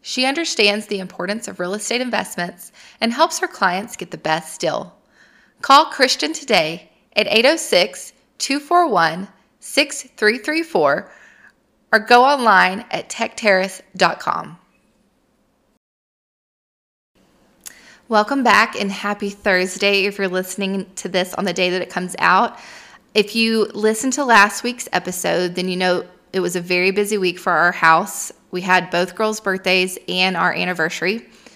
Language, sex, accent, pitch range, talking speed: English, female, American, 180-225 Hz, 135 wpm